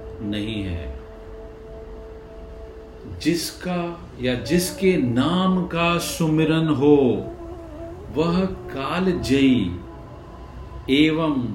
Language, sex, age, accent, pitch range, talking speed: Hindi, male, 50-69, native, 115-175 Hz, 60 wpm